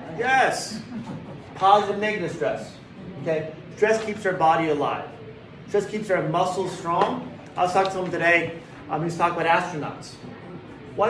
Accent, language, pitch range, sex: American, English, 150-185 Hz, male